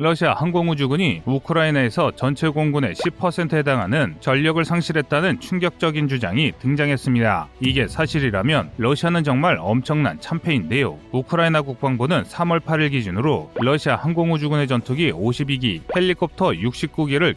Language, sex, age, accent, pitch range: Korean, male, 30-49, native, 125-165 Hz